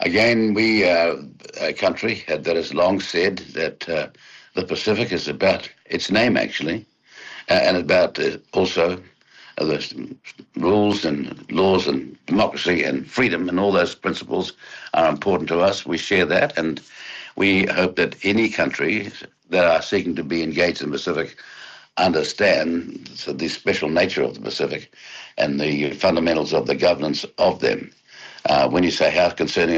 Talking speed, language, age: 155 wpm, English, 60-79